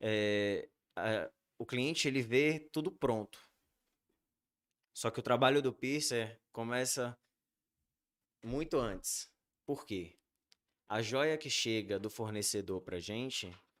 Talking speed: 110 wpm